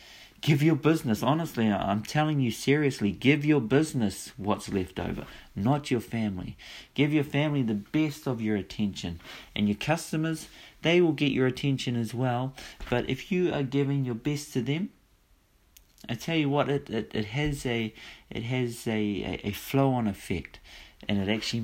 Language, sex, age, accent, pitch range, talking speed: English, male, 40-59, Australian, 100-135 Hz, 175 wpm